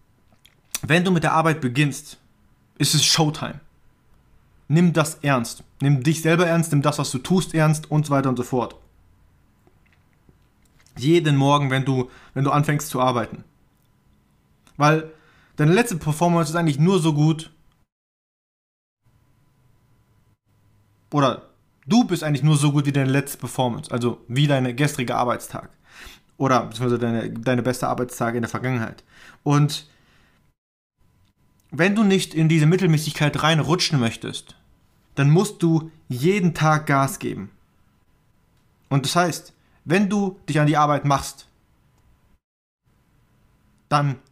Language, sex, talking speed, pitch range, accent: German, male, 130 wpm, 130-165 Hz, German